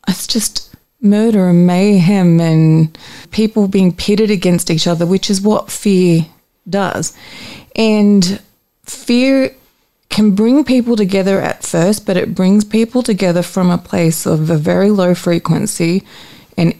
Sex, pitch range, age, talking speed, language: female, 175-205 Hz, 30-49, 140 wpm, English